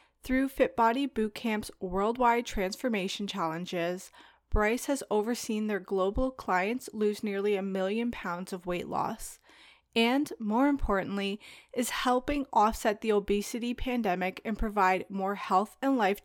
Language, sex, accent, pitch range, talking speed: English, female, American, 195-240 Hz, 130 wpm